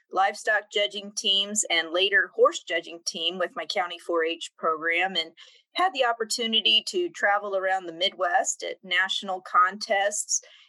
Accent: American